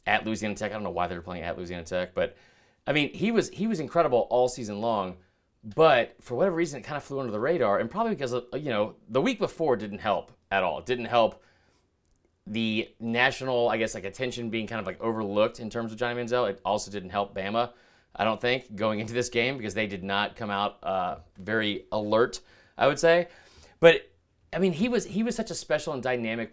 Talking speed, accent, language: 235 wpm, American, English